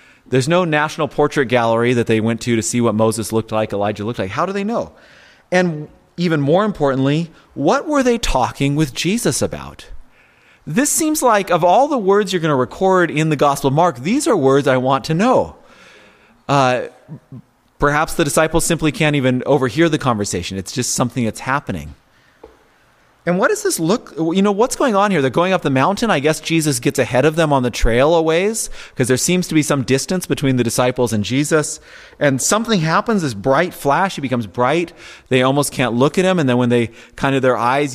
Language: English